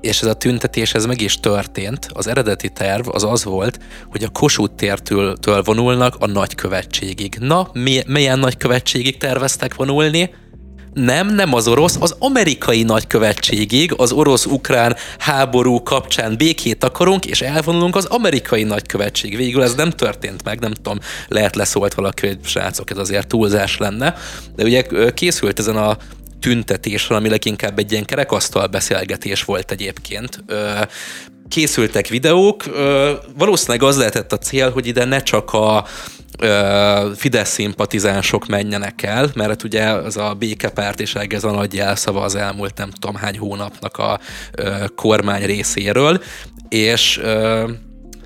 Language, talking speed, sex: Hungarian, 135 wpm, male